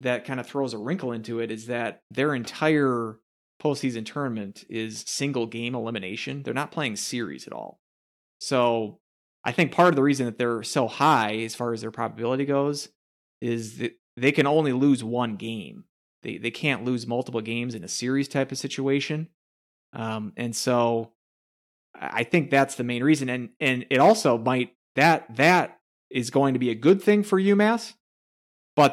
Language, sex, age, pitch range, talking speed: English, male, 30-49, 115-140 Hz, 180 wpm